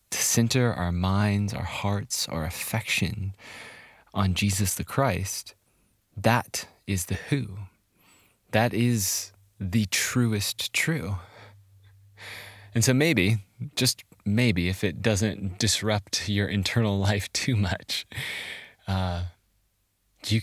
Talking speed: 110 wpm